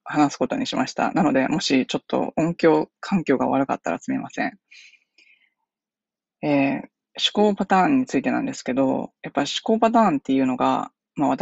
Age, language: 20-39, Japanese